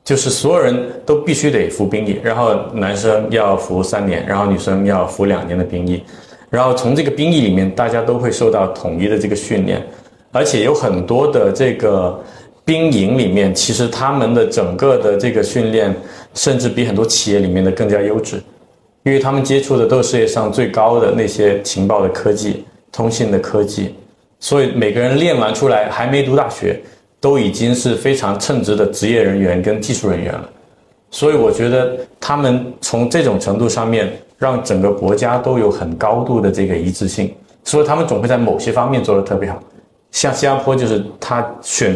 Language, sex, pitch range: Chinese, male, 100-125 Hz